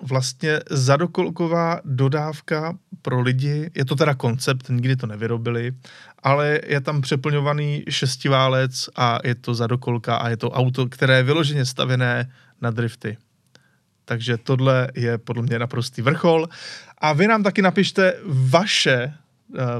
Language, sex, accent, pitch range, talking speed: Czech, male, native, 125-155 Hz, 135 wpm